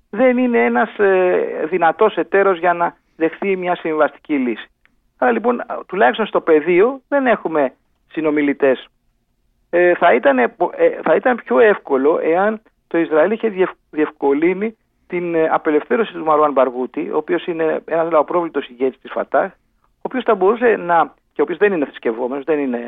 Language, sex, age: Greek, male, 50-69